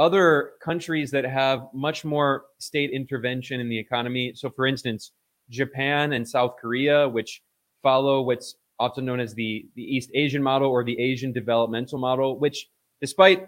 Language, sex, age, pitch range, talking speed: English, male, 20-39, 120-145 Hz, 160 wpm